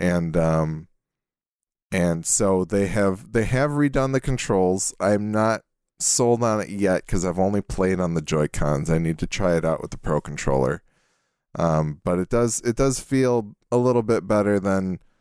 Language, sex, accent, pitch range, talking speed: English, male, American, 80-110 Hz, 185 wpm